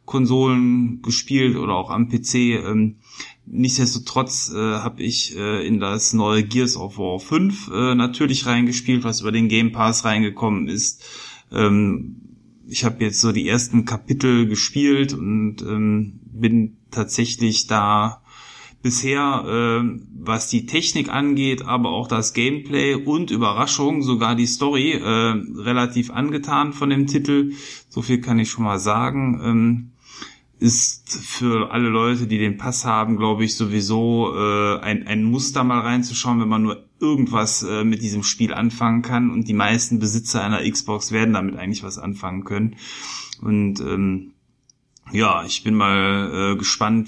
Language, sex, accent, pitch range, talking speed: German, male, German, 105-125 Hz, 150 wpm